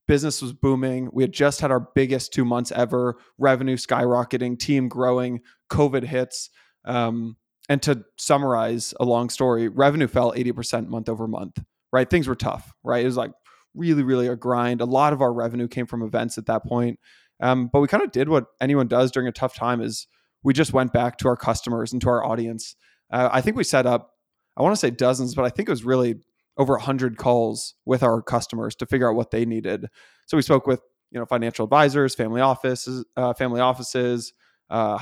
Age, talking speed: 20-39, 210 wpm